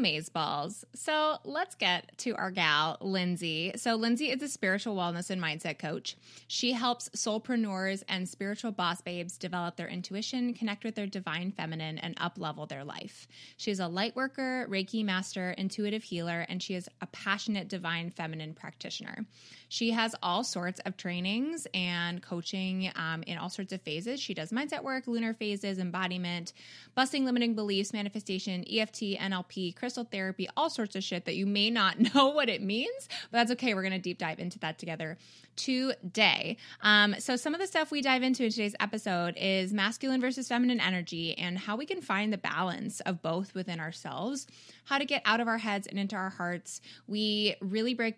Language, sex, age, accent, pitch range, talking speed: English, female, 20-39, American, 180-235 Hz, 185 wpm